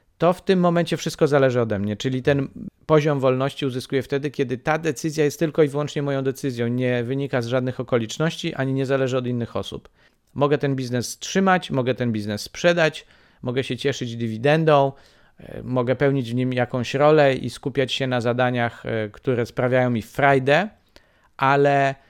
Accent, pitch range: native, 125-145 Hz